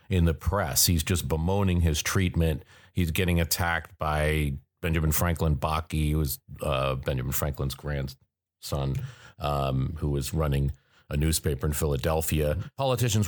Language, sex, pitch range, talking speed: English, male, 80-100 Hz, 135 wpm